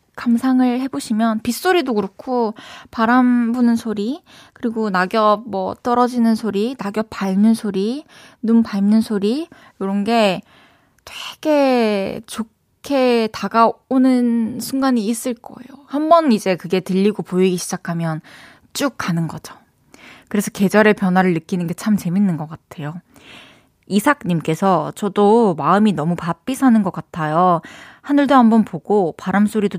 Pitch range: 190-235 Hz